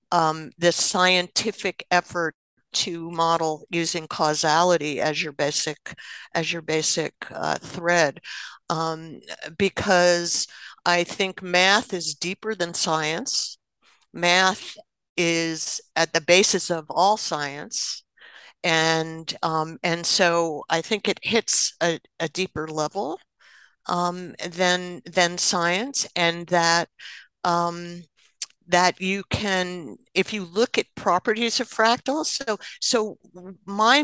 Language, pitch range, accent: English, 165-195 Hz, American